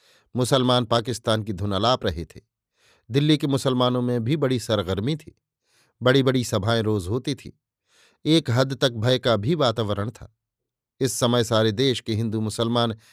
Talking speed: 160 wpm